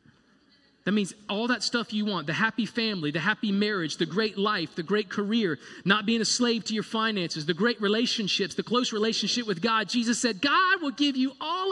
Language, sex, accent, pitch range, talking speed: English, male, American, 155-215 Hz, 210 wpm